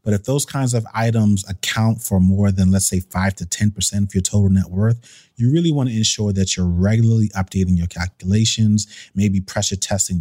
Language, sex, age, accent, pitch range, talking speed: English, male, 30-49, American, 90-110 Hz, 200 wpm